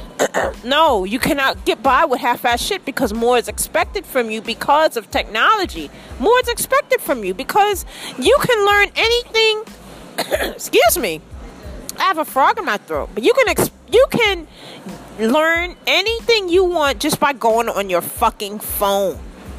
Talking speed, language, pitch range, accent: 165 wpm, English, 225-345 Hz, American